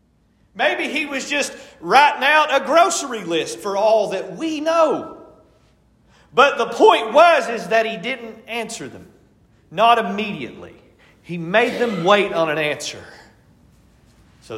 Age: 40-59